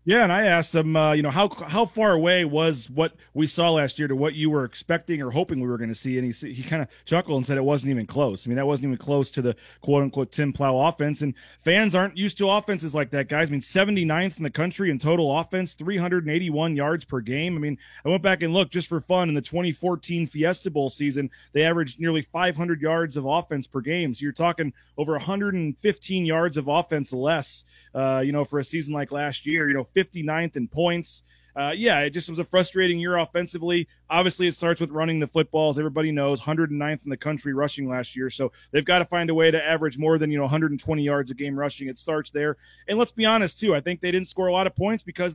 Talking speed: 245 wpm